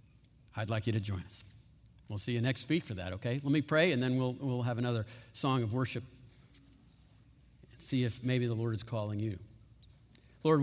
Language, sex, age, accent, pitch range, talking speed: English, male, 50-69, American, 110-135 Hz, 205 wpm